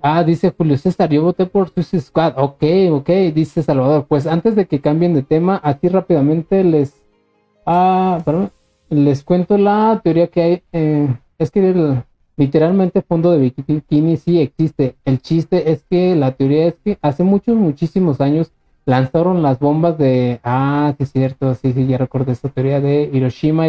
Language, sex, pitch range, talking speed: Spanish, male, 135-175 Hz, 175 wpm